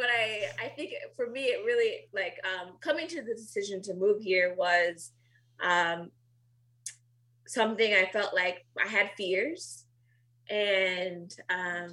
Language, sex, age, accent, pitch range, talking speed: English, female, 20-39, American, 145-210 Hz, 135 wpm